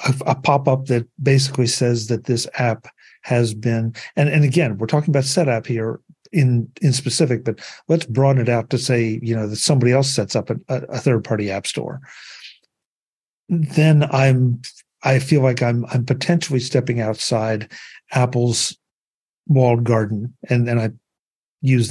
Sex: male